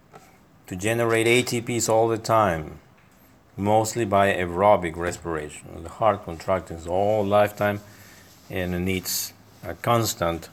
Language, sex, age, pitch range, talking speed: English, male, 50-69, 95-120 Hz, 115 wpm